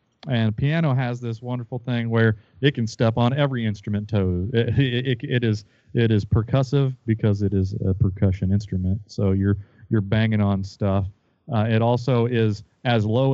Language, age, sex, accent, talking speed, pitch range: English, 30-49, male, American, 170 wpm, 100-120 Hz